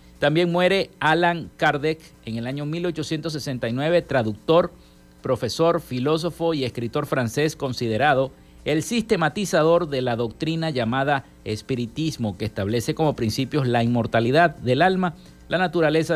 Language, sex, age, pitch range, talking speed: Spanish, male, 50-69, 115-170 Hz, 120 wpm